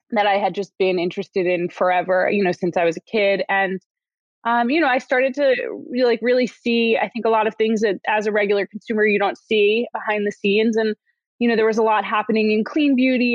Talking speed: 245 wpm